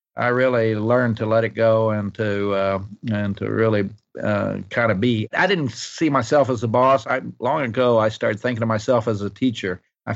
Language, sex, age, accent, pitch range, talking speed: English, male, 50-69, American, 110-130 Hz, 215 wpm